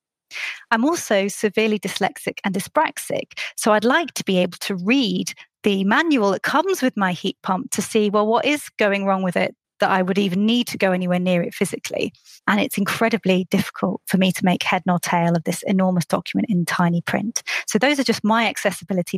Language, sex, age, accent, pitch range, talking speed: English, female, 30-49, British, 185-225 Hz, 205 wpm